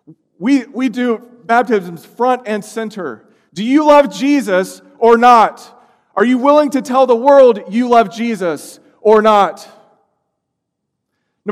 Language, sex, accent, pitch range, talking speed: English, male, American, 195-245 Hz, 135 wpm